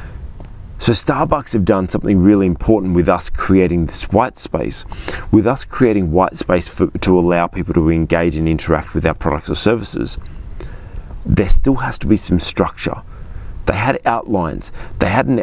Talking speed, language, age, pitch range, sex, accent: 165 wpm, English, 30-49, 85-110 Hz, male, Australian